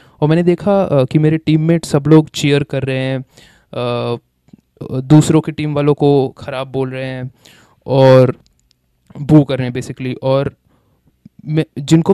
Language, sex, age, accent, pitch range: English, male, 20-39, Indian, 135-160 Hz